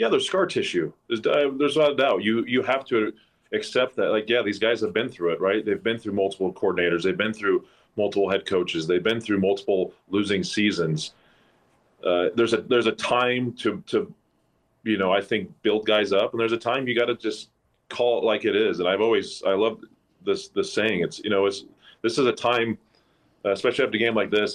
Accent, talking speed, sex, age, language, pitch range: American, 220 wpm, male, 30-49, English, 105-125 Hz